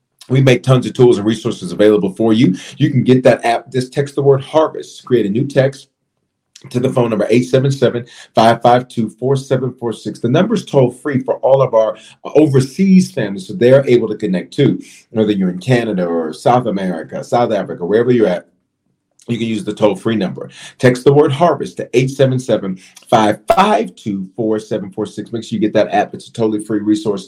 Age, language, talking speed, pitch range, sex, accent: 40-59, English, 175 wpm, 110-140 Hz, male, American